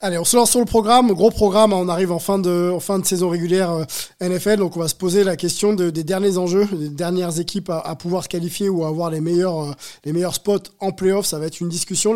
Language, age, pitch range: French, 20-39, 155-190 Hz